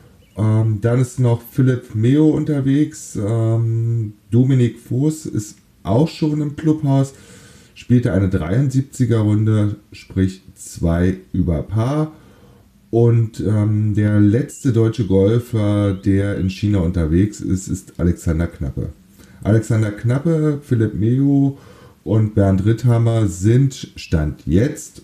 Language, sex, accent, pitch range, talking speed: German, male, German, 90-120 Hz, 105 wpm